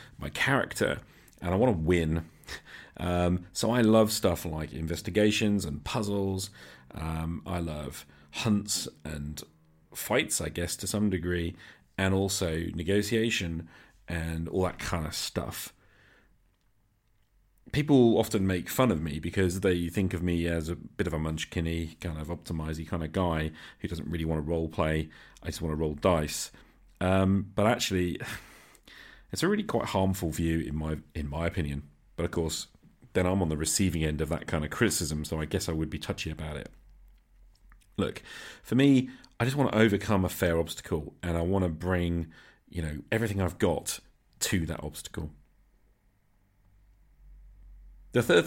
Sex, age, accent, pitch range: male, 40-59, British, 80-100 Hz